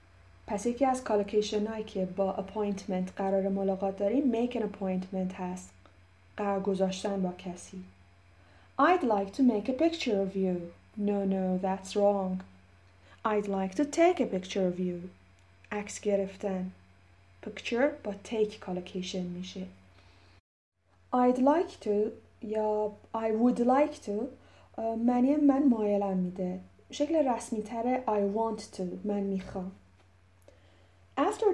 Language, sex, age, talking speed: Persian, female, 30-49, 125 wpm